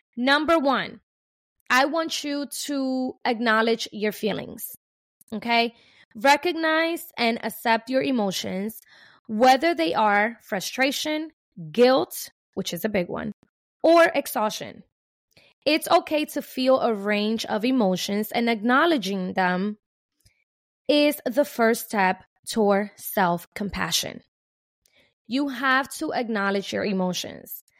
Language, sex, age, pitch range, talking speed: English, female, 20-39, 210-280 Hz, 110 wpm